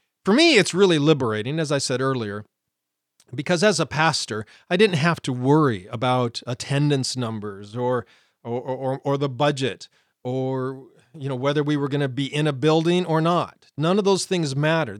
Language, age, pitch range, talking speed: English, 40-59, 125-170 Hz, 185 wpm